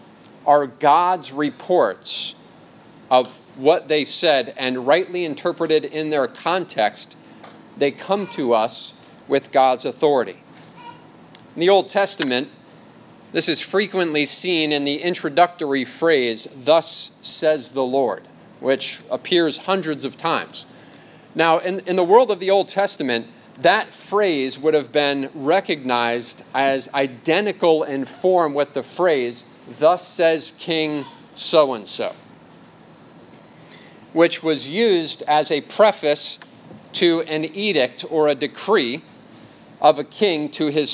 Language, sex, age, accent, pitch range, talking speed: English, male, 30-49, American, 145-185 Hz, 120 wpm